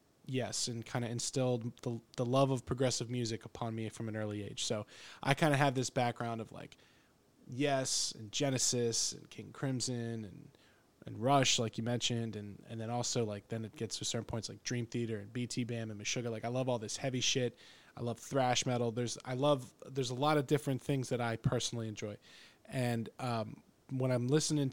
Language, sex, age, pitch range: English, male, 20-39, 115-135 Hz